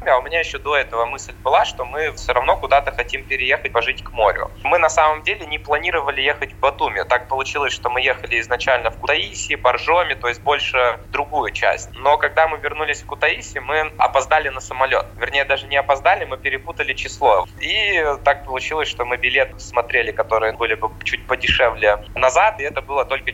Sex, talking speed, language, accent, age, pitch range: male, 195 wpm, Russian, native, 20-39, 110-140 Hz